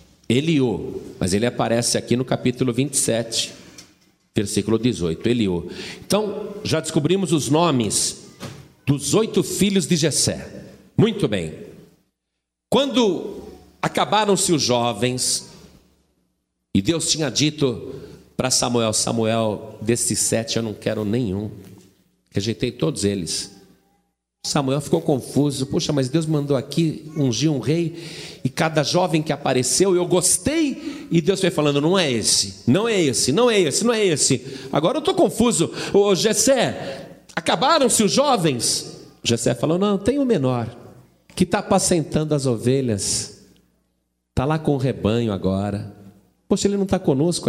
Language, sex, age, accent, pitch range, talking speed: Portuguese, male, 50-69, Brazilian, 115-175 Hz, 140 wpm